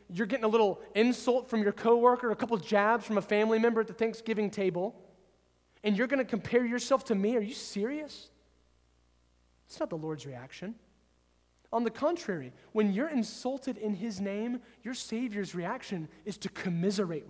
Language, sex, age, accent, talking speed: English, male, 30-49, American, 175 wpm